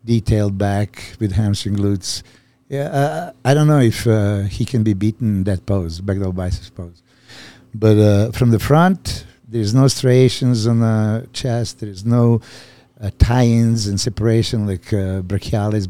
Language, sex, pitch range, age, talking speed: English, male, 105-130 Hz, 60-79, 160 wpm